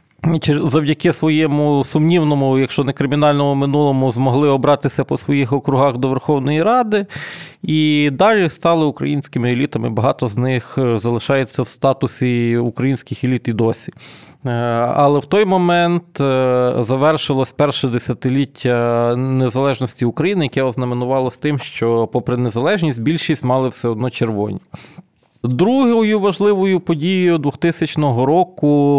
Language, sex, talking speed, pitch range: Ukrainian, male, 115 wpm, 125-155 Hz